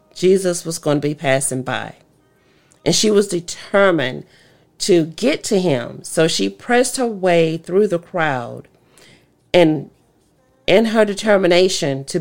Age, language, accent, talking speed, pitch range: 40-59, English, American, 140 wpm, 155-200 Hz